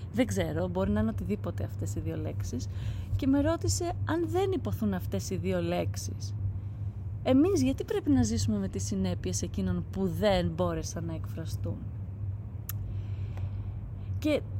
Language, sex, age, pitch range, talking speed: Greek, female, 30-49, 95-105 Hz, 145 wpm